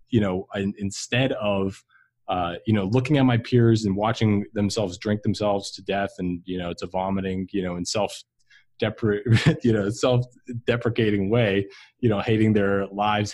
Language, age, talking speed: English, 20-39, 165 wpm